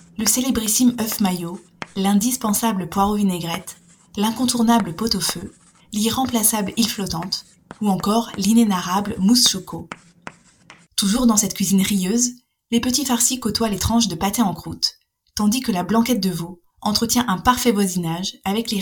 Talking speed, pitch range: 130 wpm, 185-225 Hz